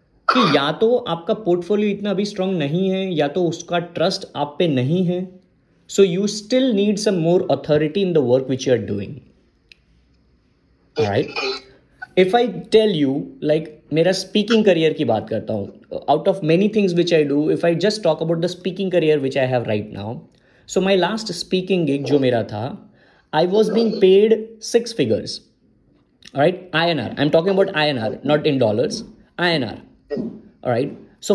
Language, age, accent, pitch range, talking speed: English, 20-39, Indian, 150-205 Hz, 155 wpm